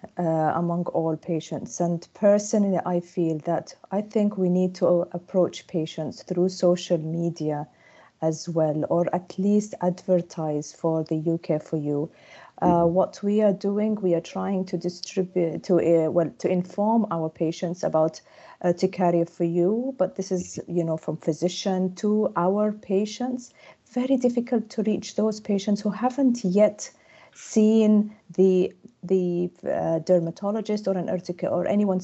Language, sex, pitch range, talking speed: English, female, 170-205 Hz, 155 wpm